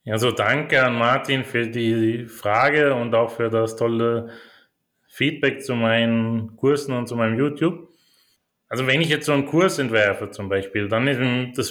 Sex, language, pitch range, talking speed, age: male, German, 115-140 Hz, 175 wpm, 30-49